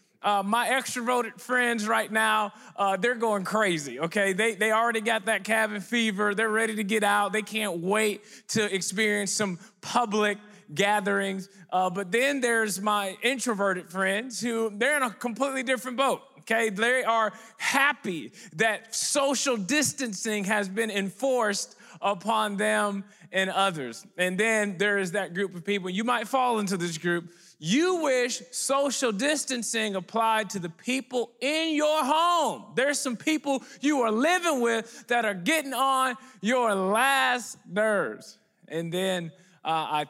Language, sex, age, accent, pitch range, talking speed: English, male, 20-39, American, 190-235 Hz, 155 wpm